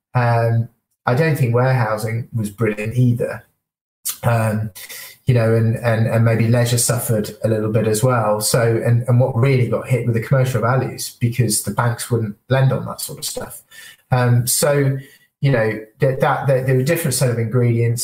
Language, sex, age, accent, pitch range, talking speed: English, male, 30-49, British, 115-130 Hz, 185 wpm